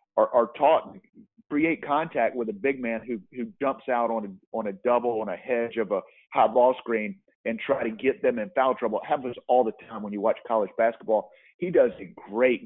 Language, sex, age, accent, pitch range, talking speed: English, male, 40-59, American, 110-130 Hz, 230 wpm